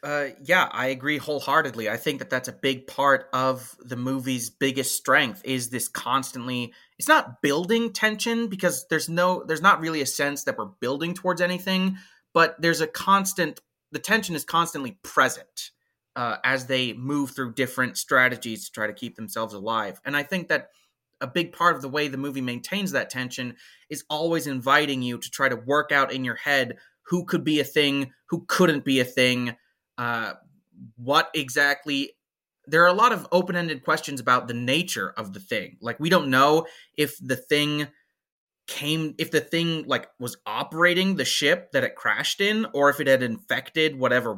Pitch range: 130-170 Hz